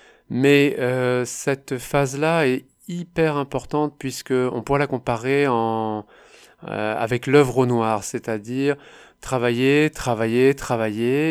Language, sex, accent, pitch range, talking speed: French, male, French, 115-145 Hz, 110 wpm